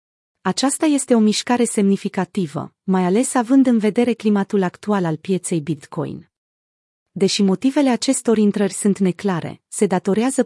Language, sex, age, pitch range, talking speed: Romanian, female, 30-49, 180-220 Hz, 130 wpm